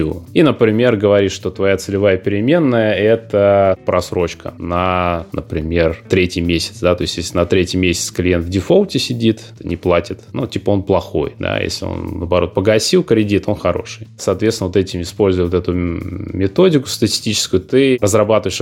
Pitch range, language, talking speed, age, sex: 90-115 Hz, Russian, 155 wpm, 20-39, male